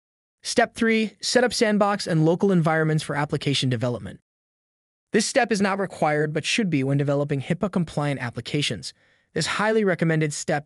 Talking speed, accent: 150 wpm, American